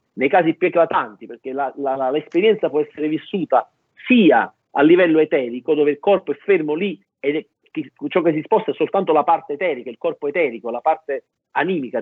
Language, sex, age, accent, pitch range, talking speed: Italian, male, 50-69, native, 150-235 Hz, 190 wpm